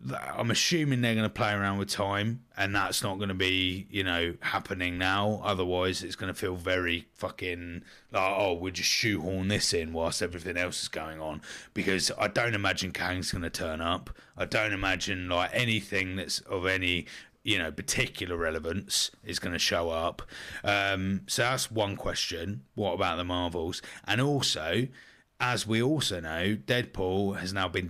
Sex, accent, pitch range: male, British, 90-105 Hz